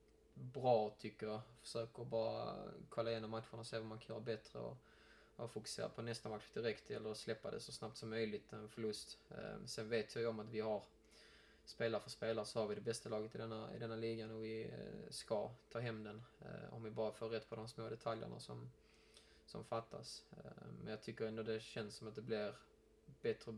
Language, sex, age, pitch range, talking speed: Swedish, male, 20-39, 110-120 Hz, 210 wpm